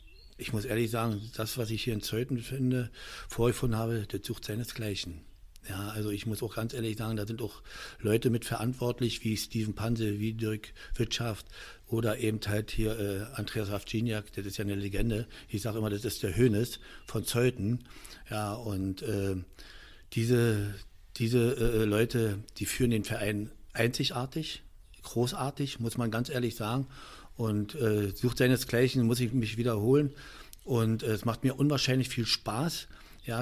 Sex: male